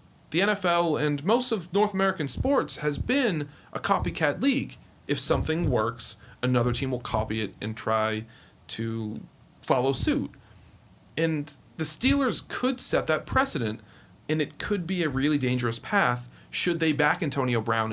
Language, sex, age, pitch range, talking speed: English, male, 40-59, 120-165 Hz, 155 wpm